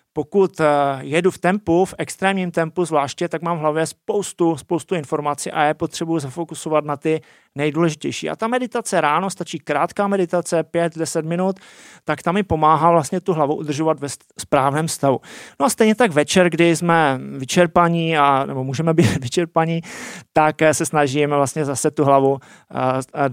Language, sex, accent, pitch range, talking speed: Czech, male, native, 145-180 Hz, 165 wpm